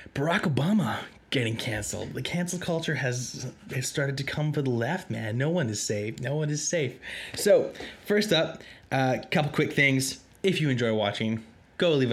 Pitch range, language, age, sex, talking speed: 110-125 Hz, English, 20-39, male, 185 wpm